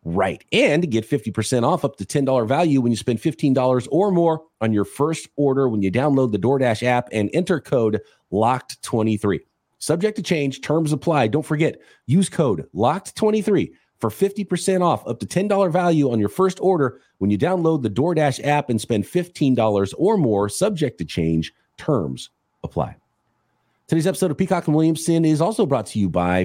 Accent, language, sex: American, English, male